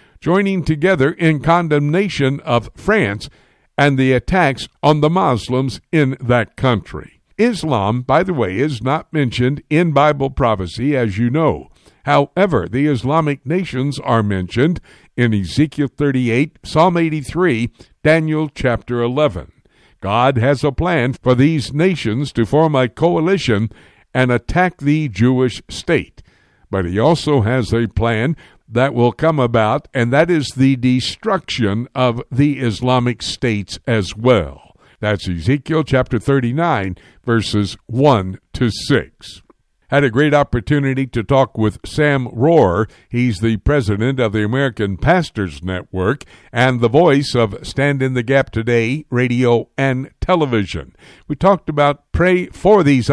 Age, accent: 60-79, American